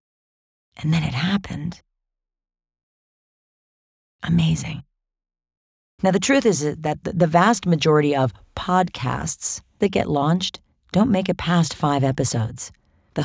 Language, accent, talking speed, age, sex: English, American, 115 wpm, 40-59, female